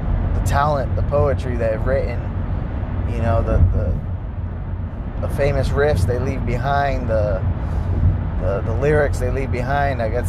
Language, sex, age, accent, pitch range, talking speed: English, male, 20-39, American, 90-115 Hz, 145 wpm